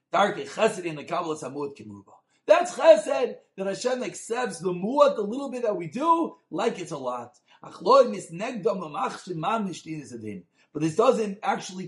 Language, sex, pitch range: English, male, 190-255 Hz